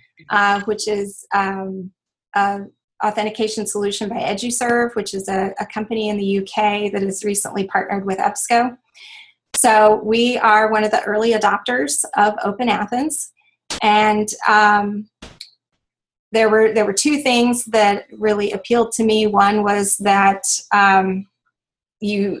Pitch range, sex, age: 195-220 Hz, female, 30-49